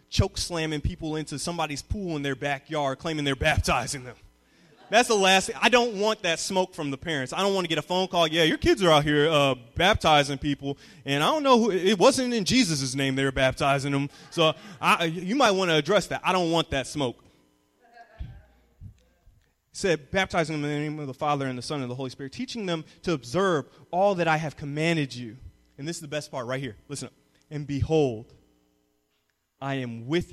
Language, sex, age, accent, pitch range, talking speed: English, male, 20-39, American, 140-210 Hz, 220 wpm